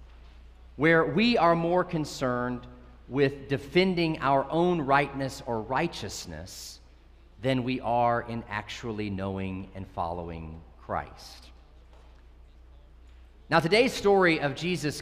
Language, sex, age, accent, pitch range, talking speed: English, male, 40-59, American, 110-160 Hz, 105 wpm